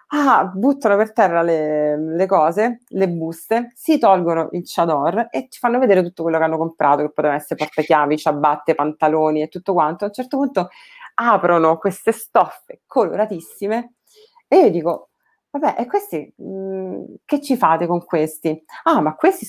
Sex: female